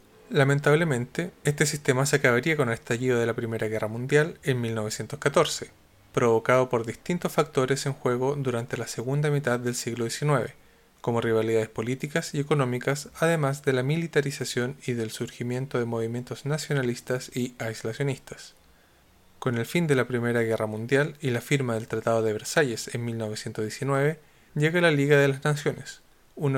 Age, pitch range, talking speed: 20-39, 115-145 Hz, 155 wpm